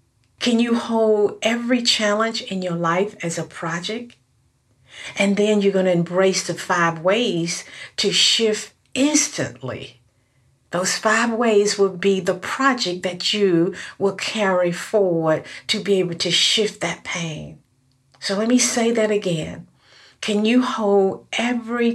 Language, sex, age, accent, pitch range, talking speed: English, female, 50-69, American, 170-220 Hz, 140 wpm